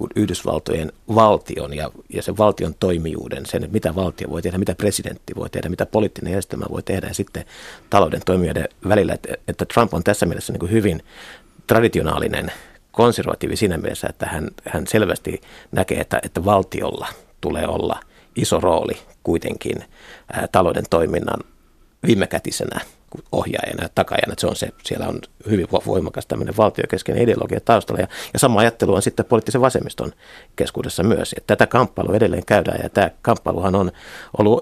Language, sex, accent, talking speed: Finnish, male, native, 150 wpm